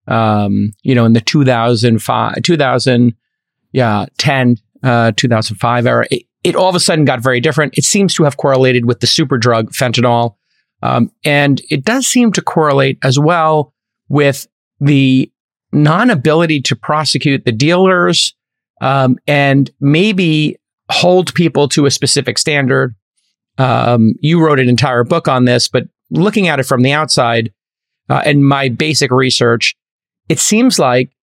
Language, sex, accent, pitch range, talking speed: English, male, American, 120-155 Hz, 150 wpm